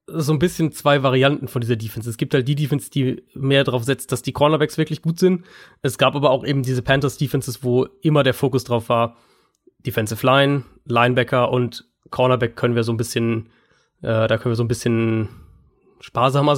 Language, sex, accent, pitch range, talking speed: German, male, German, 120-145 Hz, 195 wpm